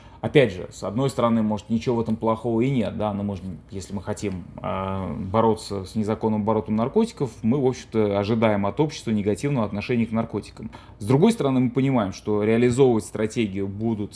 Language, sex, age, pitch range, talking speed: Russian, male, 20-39, 105-120 Hz, 180 wpm